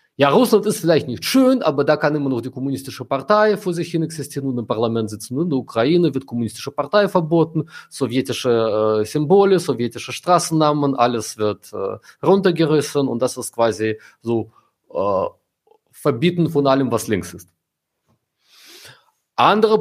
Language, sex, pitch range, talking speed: German, male, 115-160 Hz, 155 wpm